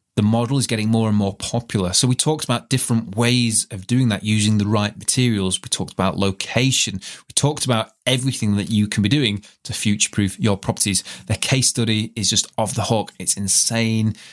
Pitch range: 100-125 Hz